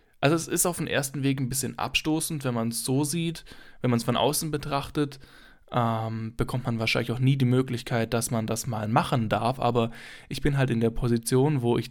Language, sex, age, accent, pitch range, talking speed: German, male, 10-29, German, 115-140 Hz, 220 wpm